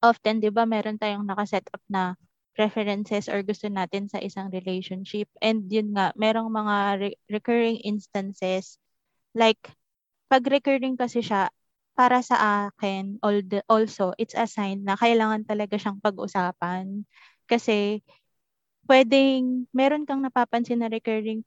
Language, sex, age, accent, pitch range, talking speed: English, female, 20-39, Filipino, 205-240 Hz, 135 wpm